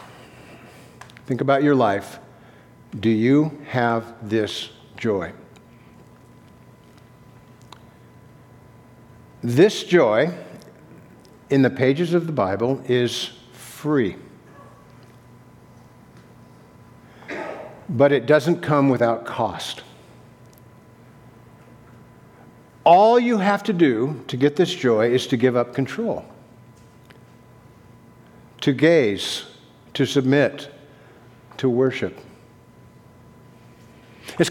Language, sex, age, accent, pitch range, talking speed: English, male, 60-79, American, 125-190 Hz, 80 wpm